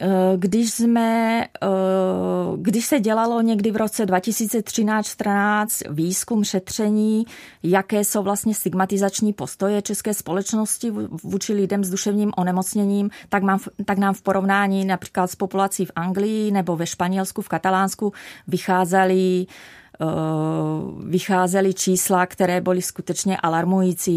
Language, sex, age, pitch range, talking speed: Czech, female, 30-49, 180-205 Hz, 110 wpm